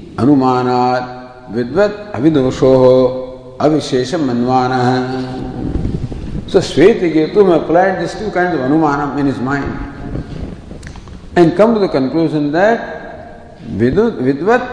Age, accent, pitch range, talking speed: 50-69, Indian, 130-160 Hz, 100 wpm